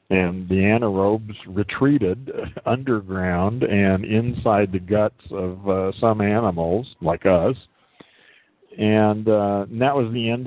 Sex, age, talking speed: male, 50-69, 125 wpm